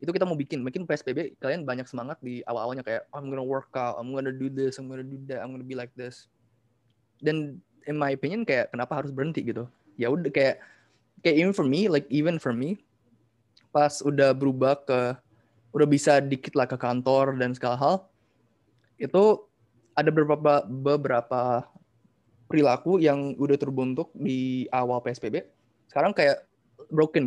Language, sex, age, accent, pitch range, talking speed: Indonesian, male, 20-39, native, 120-150 Hz, 165 wpm